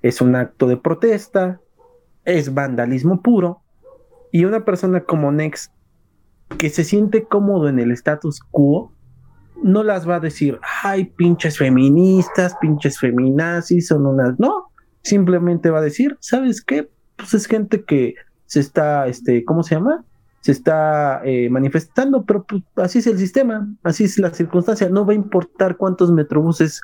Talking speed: 155 wpm